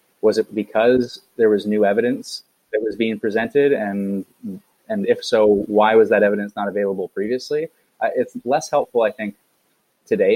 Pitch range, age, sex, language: 105-125 Hz, 20-39, male, English